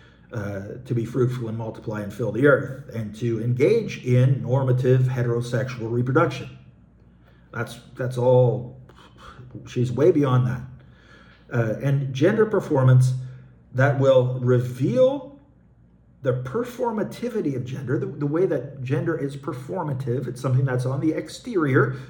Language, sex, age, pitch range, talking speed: English, male, 50-69, 120-140 Hz, 130 wpm